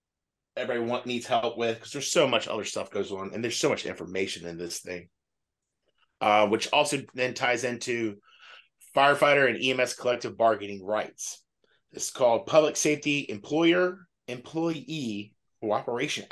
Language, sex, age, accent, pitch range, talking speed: English, male, 30-49, American, 115-145 Hz, 145 wpm